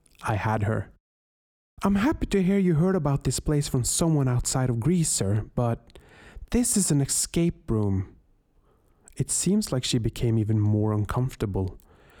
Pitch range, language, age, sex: 110-155 Hz, English, 30-49, male